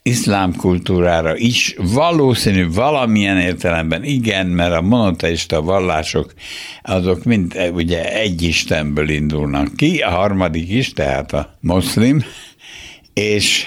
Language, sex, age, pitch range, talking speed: Hungarian, male, 60-79, 75-100 Hz, 110 wpm